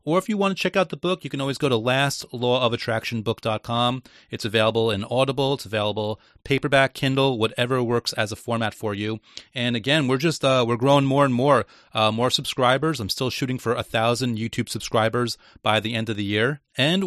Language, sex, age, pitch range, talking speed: English, male, 30-49, 110-130 Hz, 205 wpm